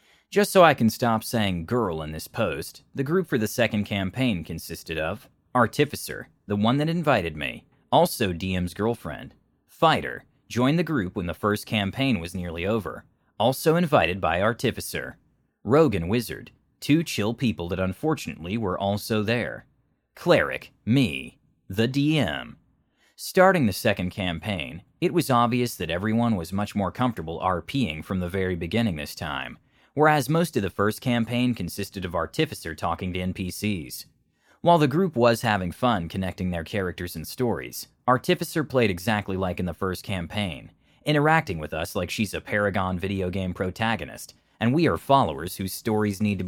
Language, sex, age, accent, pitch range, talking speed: English, male, 30-49, American, 95-125 Hz, 165 wpm